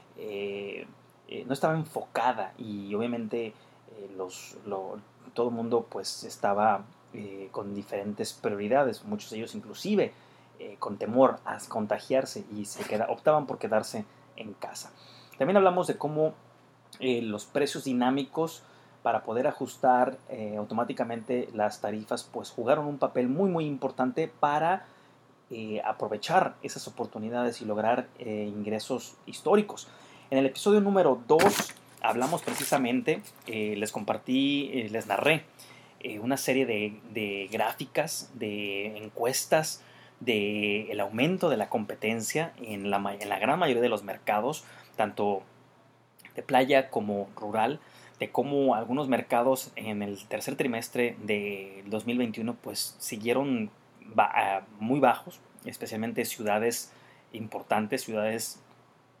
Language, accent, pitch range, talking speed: Spanish, Mexican, 105-135 Hz, 130 wpm